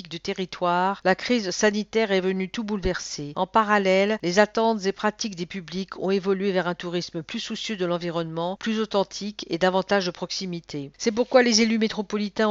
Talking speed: 175 wpm